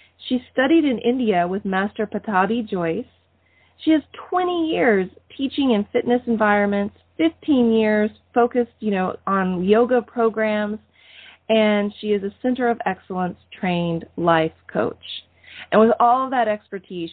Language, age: English, 30-49